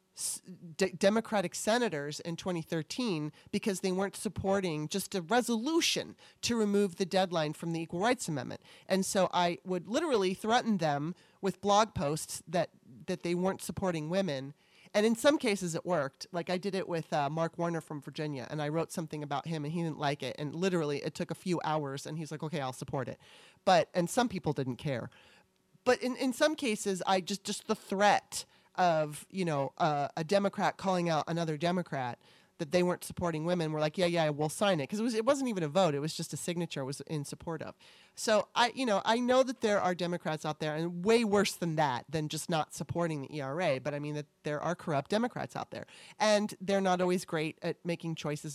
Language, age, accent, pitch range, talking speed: English, 30-49, American, 155-195 Hz, 215 wpm